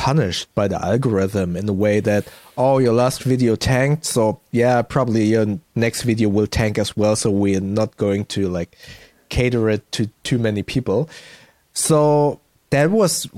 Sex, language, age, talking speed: male, English, 30-49, 170 wpm